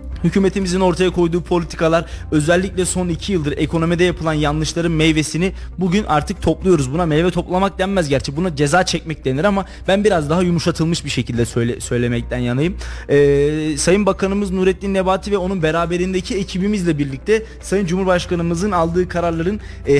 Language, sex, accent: Turkish, male, native